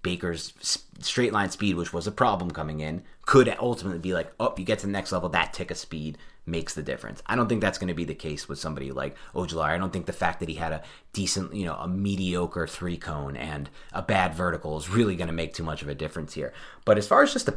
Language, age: English, 30-49